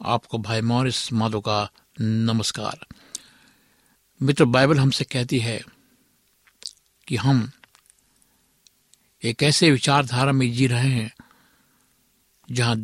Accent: native